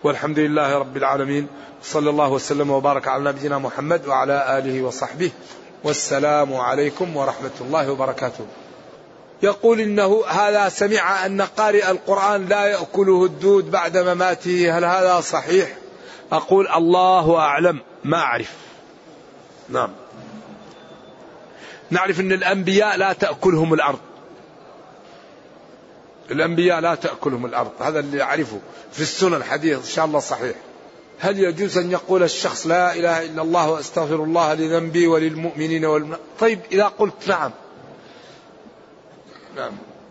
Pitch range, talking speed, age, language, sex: 150-185 Hz, 120 wpm, 40-59, Arabic, male